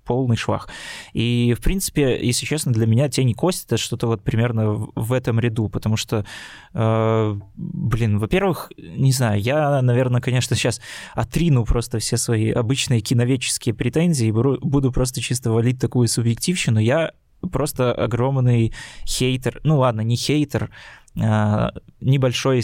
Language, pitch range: Russian, 110-130 Hz